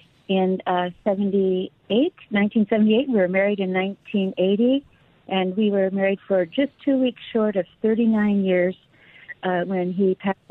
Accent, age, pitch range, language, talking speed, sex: American, 50-69, 190-230 Hz, English, 145 wpm, female